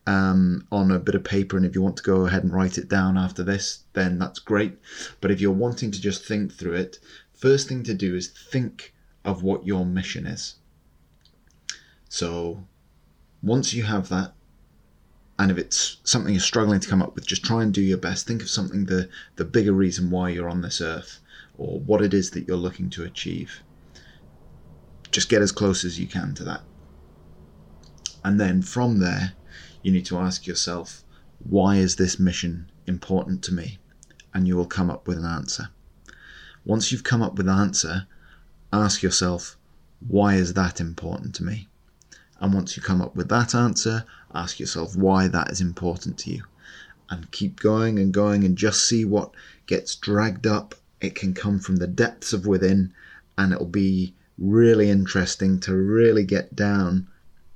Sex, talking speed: male, 185 wpm